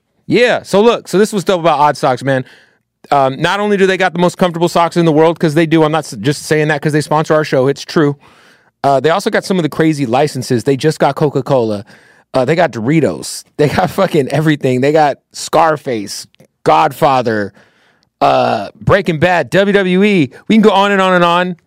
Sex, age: male, 30-49